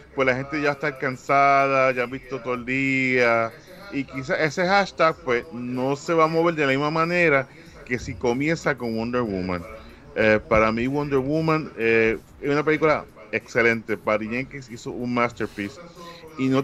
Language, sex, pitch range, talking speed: English, male, 115-145 Hz, 175 wpm